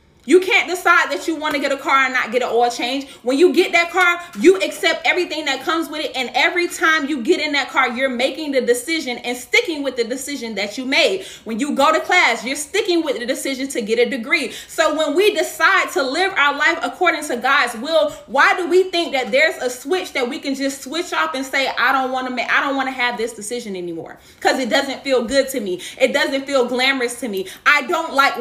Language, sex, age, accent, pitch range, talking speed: English, female, 20-39, American, 255-330 Hz, 250 wpm